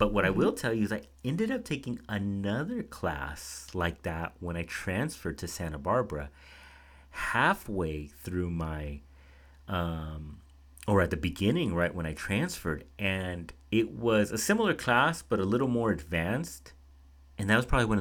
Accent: American